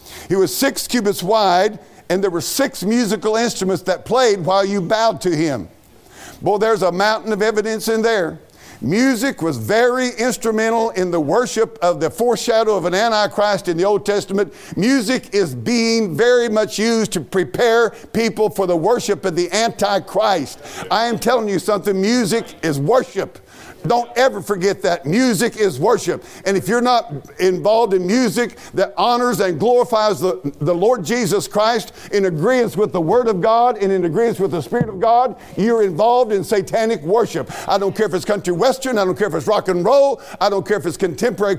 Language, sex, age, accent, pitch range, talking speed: English, male, 50-69, American, 190-235 Hz, 190 wpm